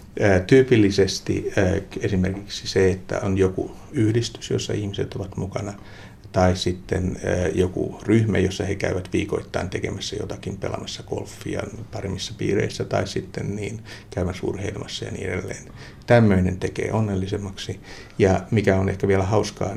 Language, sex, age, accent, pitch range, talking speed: Finnish, male, 60-79, native, 95-110 Hz, 130 wpm